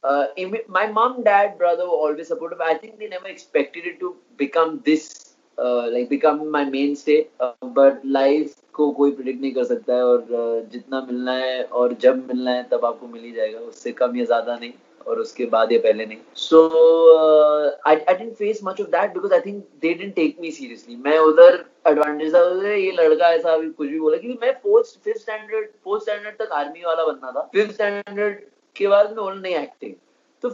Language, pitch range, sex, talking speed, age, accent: Hindi, 135-215 Hz, male, 205 wpm, 20-39, native